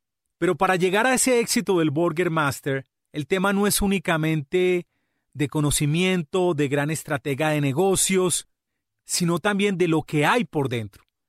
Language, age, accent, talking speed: Spanish, 40-59, Colombian, 155 wpm